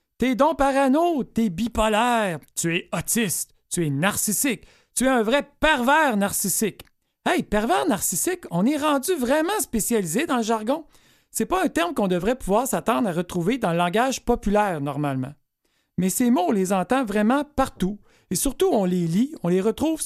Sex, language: male, French